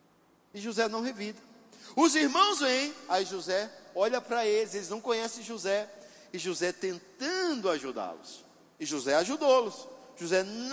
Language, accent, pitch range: Portuguese, Brazilian, 185-265 Hz